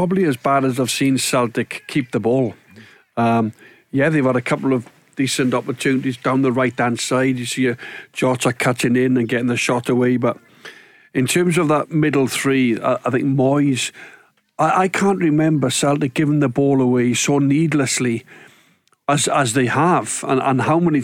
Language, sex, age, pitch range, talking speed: English, male, 50-69, 130-150 Hz, 175 wpm